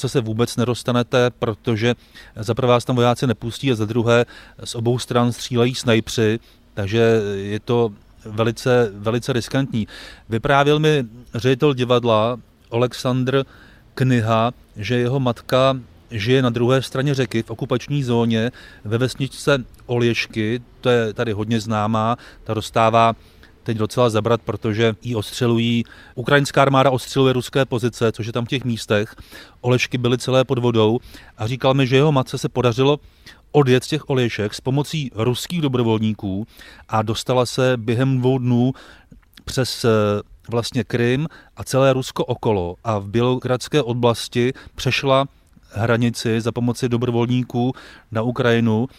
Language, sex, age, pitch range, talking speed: Czech, male, 30-49, 115-130 Hz, 135 wpm